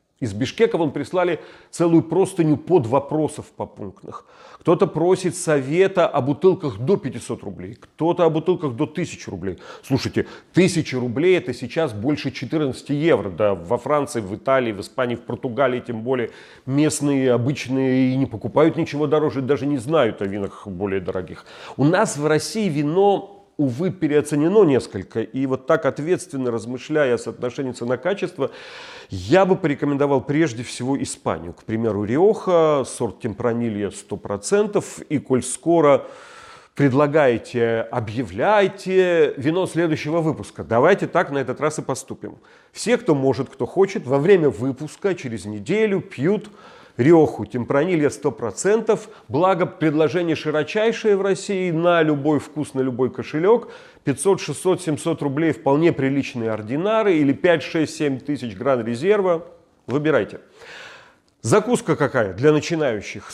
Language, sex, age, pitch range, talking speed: Russian, male, 40-59, 125-180 Hz, 135 wpm